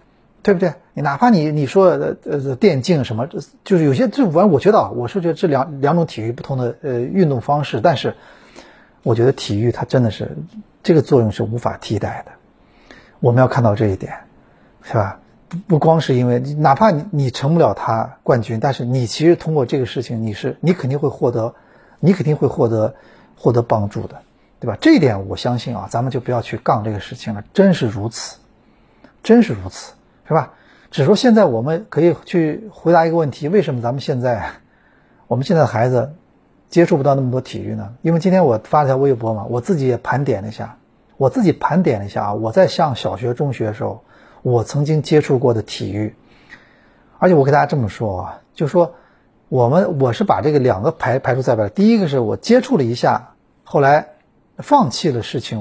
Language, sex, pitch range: Chinese, male, 115-165 Hz